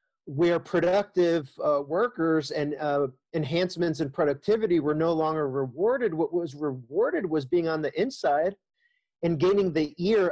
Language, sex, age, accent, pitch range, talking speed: English, male, 40-59, American, 150-180 Hz, 145 wpm